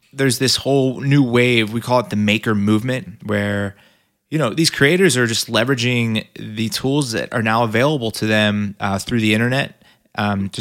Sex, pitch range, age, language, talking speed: male, 110-135 Hz, 20-39, English, 185 wpm